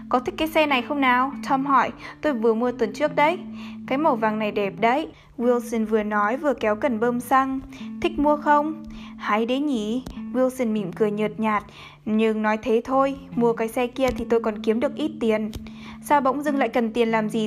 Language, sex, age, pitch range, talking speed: Vietnamese, female, 20-39, 220-265 Hz, 215 wpm